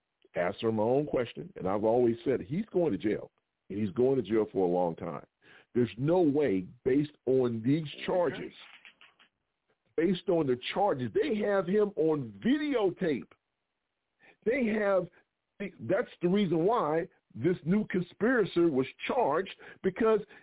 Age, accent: 50-69, American